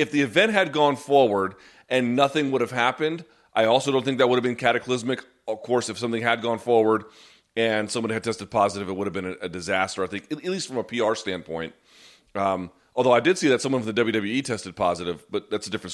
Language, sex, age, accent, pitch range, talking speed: English, male, 30-49, American, 110-140 Hz, 235 wpm